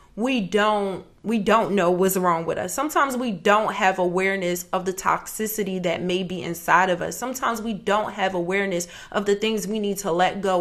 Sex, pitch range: female, 195-240 Hz